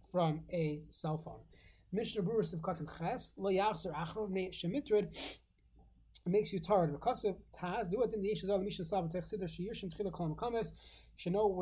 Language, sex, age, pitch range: English, male, 30-49, 170-220 Hz